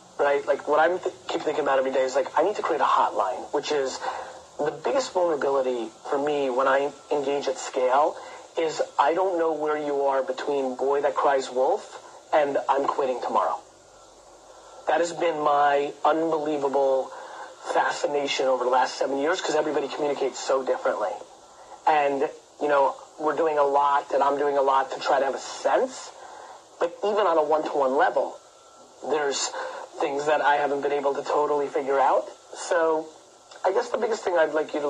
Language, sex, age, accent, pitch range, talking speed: English, male, 30-49, American, 140-165 Hz, 185 wpm